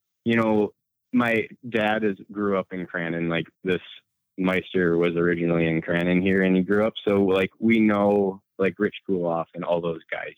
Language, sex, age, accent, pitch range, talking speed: English, male, 20-39, American, 95-110 Hz, 185 wpm